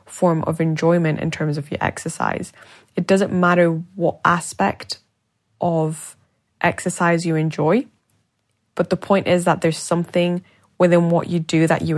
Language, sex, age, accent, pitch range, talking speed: English, female, 10-29, British, 150-170 Hz, 150 wpm